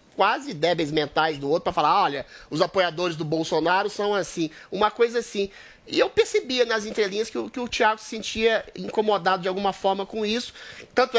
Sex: male